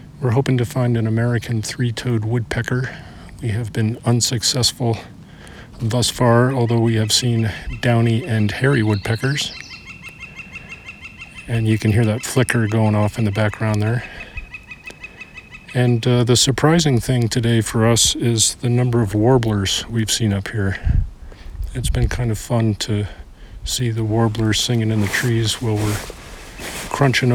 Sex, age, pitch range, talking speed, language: male, 50-69, 110-125 Hz, 145 wpm, English